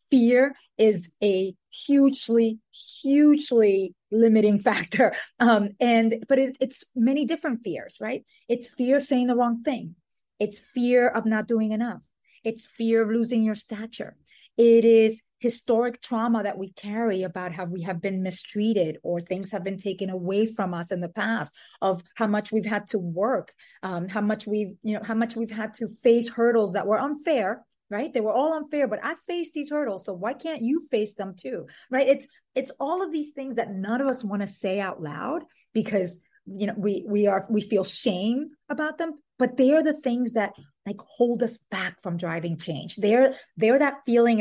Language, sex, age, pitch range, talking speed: English, female, 30-49, 195-245 Hz, 195 wpm